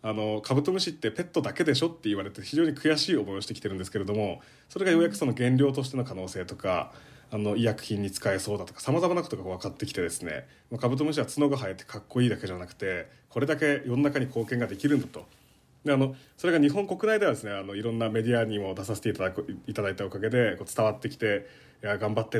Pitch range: 105-145 Hz